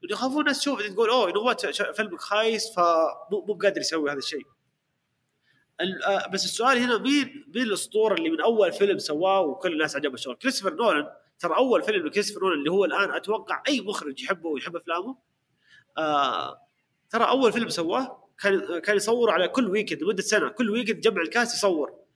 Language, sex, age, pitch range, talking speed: Arabic, male, 30-49, 180-240 Hz, 170 wpm